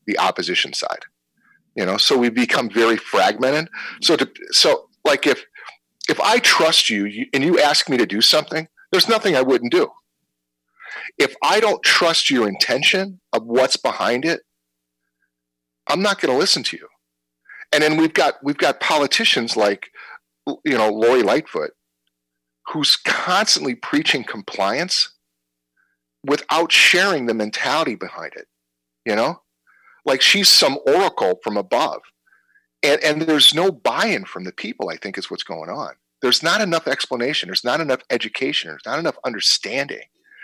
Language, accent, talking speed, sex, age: English, American, 155 wpm, male, 40-59